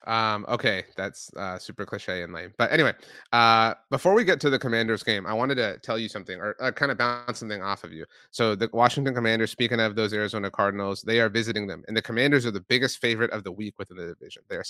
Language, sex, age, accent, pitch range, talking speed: English, male, 30-49, American, 105-125 Hz, 250 wpm